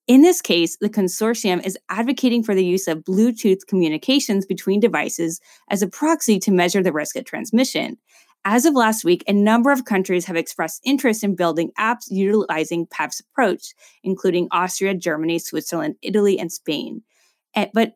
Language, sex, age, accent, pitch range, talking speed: English, female, 20-39, American, 175-240 Hz, 165 wpm